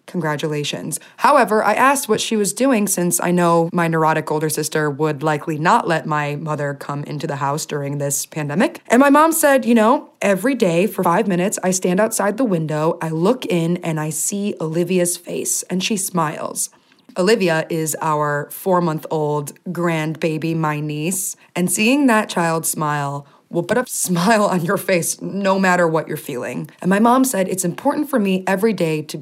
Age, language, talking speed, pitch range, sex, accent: 20-39, English, 185 wpm, 160-220 Hz, female, American